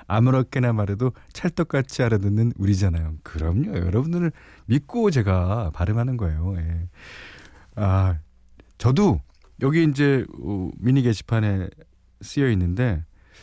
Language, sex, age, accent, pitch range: Korean, male, 40-59, native, 85-145 Hz